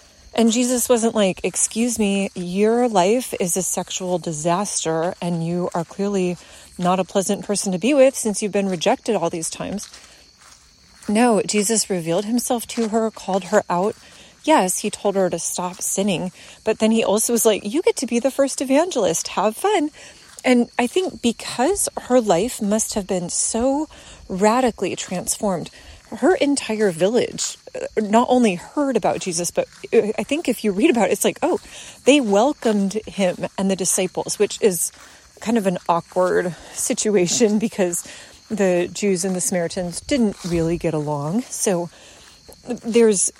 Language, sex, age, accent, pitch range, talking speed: English, female, 30-49, American, 185-240 Hz, 160 wpm